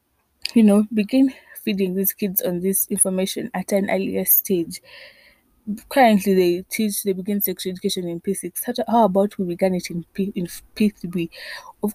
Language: English